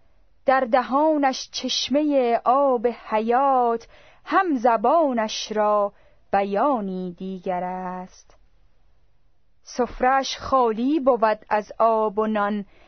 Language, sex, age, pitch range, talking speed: Persian, female, 30-49, 210-265 Hz, 85 wpm